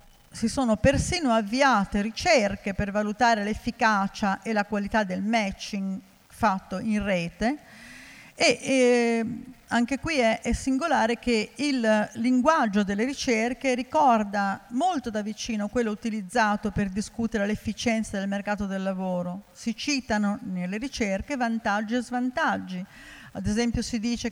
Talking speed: 130 wpm